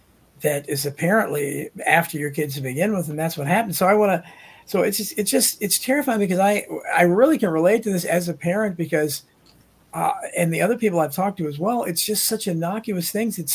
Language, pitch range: English, 155-205 Hz